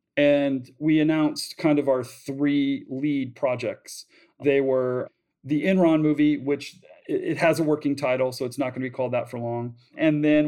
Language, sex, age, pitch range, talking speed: English, male, 40-59, 130-150 Hz, 185 wpm